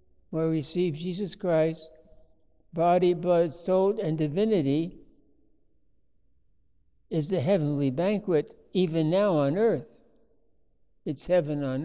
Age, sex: 60-79, male